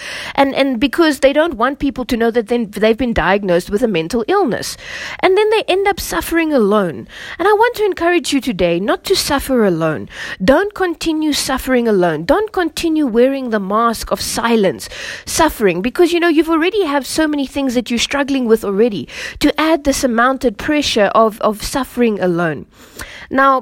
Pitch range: 195-290 Hz